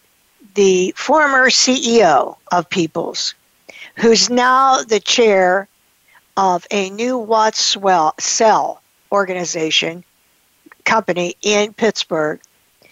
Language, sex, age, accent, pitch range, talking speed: English, female, 60-79, American, 195-260 Hz, 85 wpm